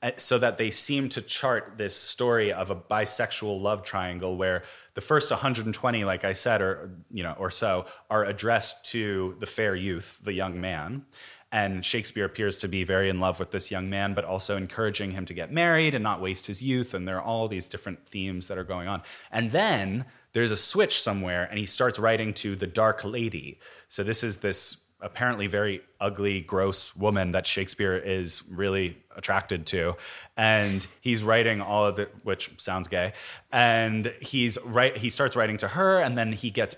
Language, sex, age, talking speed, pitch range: English, male, 20-39, 195 wpm, 95-120 Hz